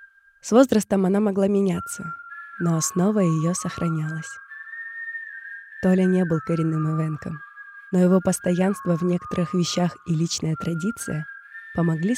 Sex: female